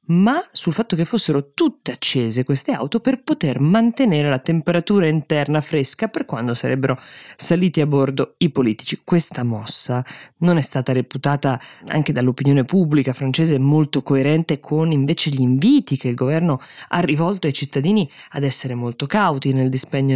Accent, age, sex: native, 20-39, female